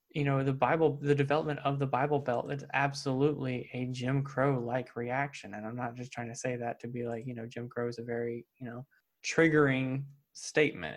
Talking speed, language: 215 wpm, English